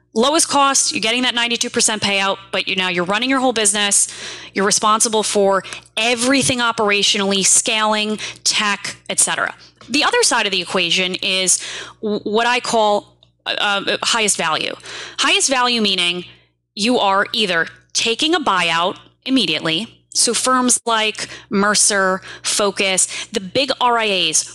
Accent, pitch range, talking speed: American, 175-235 Hz, 130 wpm